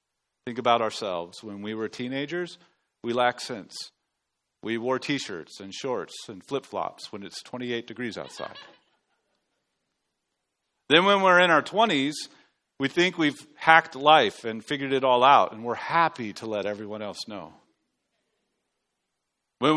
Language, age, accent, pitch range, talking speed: English, 40-59, American, 110-145 Hz, 145 wpm